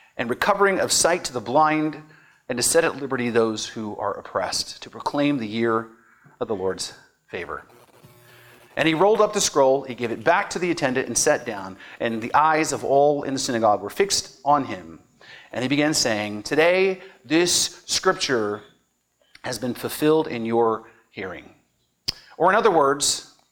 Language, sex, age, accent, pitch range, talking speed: English, male, 40-59, American, 130-200 Hz, 175 wpm